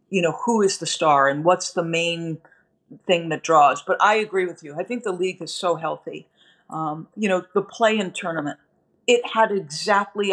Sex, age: female, 50-69